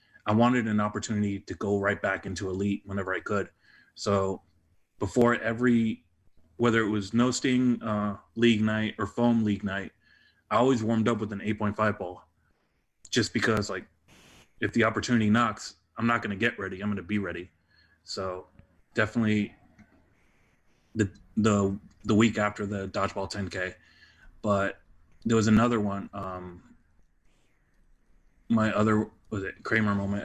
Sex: male